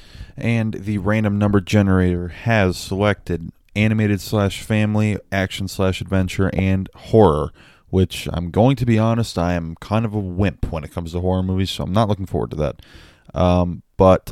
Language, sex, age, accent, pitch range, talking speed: English, male, 20-39, American, 90-110 Hz, 175 wpm